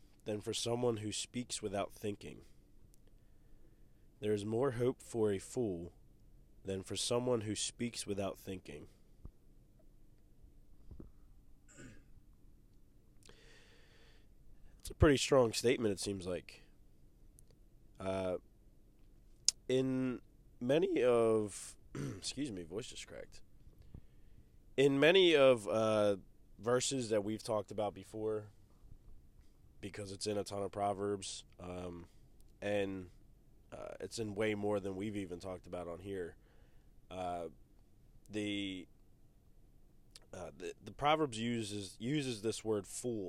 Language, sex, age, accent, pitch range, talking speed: English, male, 20-39, American, 95-110 Hz, 110 wpm